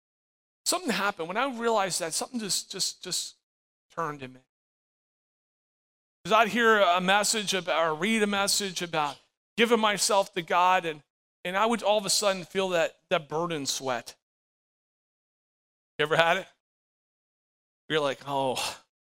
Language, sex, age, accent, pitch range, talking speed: English, male, 40-59, American, 165-210 Hz, 150 wpm